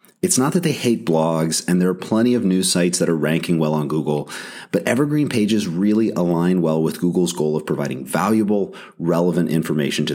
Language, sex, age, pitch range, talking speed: English, male, 30-49, 80-115 Hz, 200 wpm